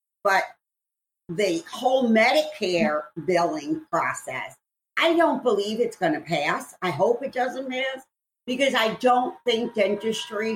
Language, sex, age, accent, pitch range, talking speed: English, female, 50-69, American, 185-295 Hz, 130 wpm